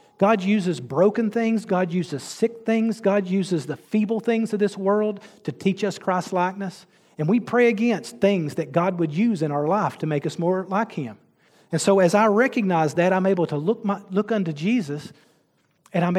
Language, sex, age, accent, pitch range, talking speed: English, male, 40-59, American, 160-195 Hz, 205 wpm